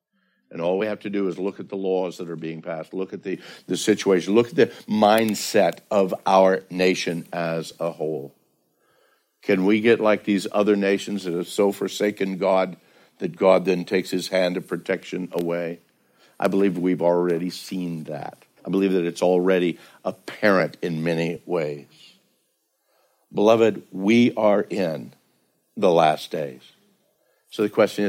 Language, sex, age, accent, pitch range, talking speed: English, male, 60-79, American, 85-110 Hz, 160 wpm